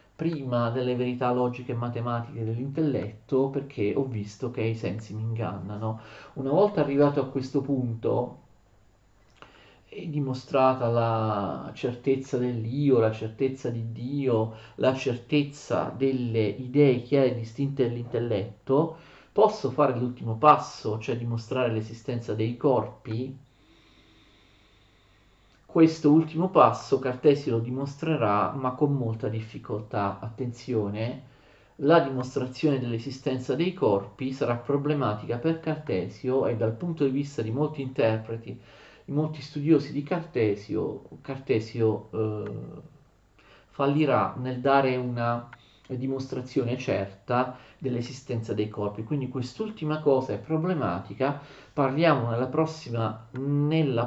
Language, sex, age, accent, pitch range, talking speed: Italian, male, 40-59, native, 110-145 Hz, 110 wpm